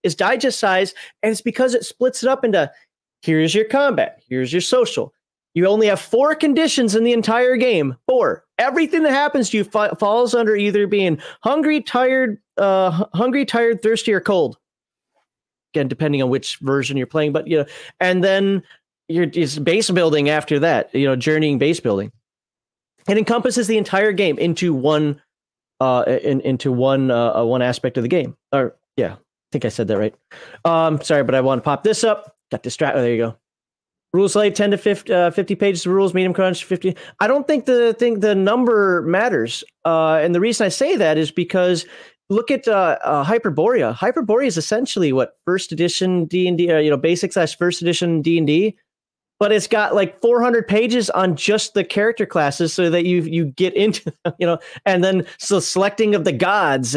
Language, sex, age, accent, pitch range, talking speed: English, male, 30-49, American, 155-220 Hz, 200 wpm